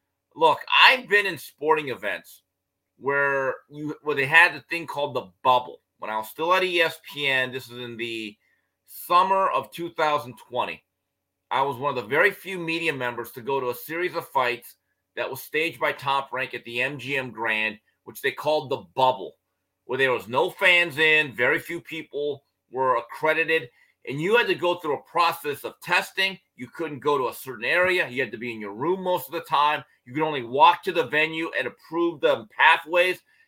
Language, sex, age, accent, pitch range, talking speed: English, male, 30-49, American, 130-180 Hz, 195 wpm